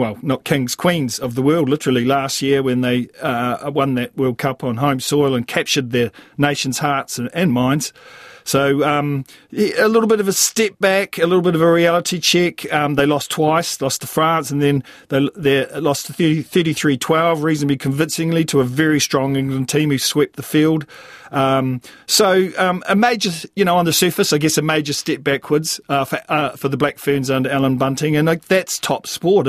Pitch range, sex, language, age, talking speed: 135-160 Hz, male, English, 40-59, 210 wpm